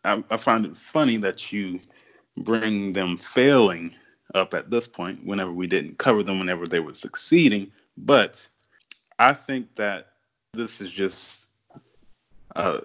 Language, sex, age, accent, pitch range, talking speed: English, male, 20-39, American, 90-110 Hz, 140 wpm